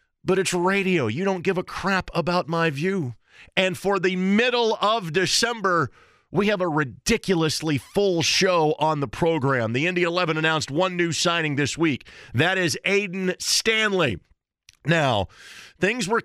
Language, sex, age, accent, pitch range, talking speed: English, male, 40-59, American, 125-170 Hz, 155 wpm